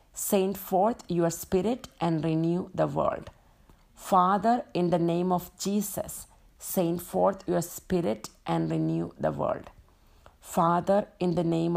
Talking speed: 135 wpm